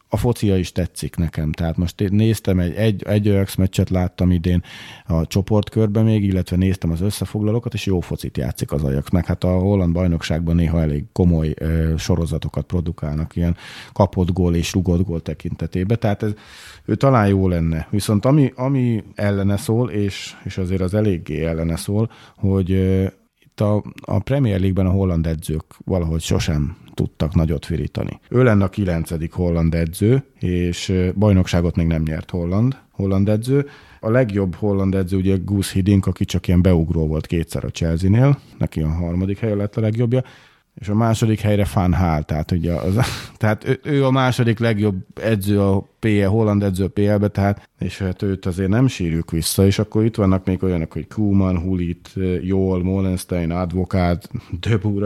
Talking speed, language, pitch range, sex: 170 wpm, Hungarian, 85-105 Hz, male